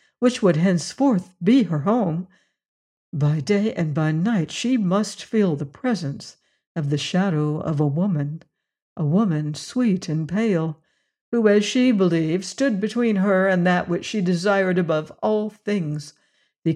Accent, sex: American, female